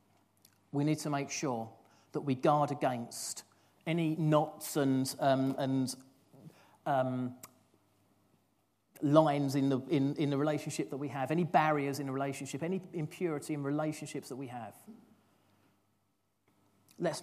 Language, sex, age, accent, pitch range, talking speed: English, male, 40-59, British, 120-150 Hz, 130 wpm